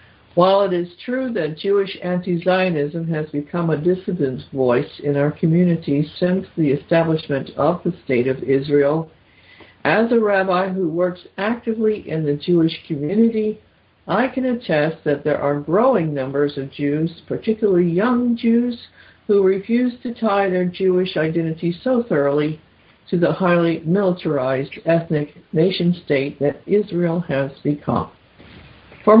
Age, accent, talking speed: 60-79, American, 135 wpm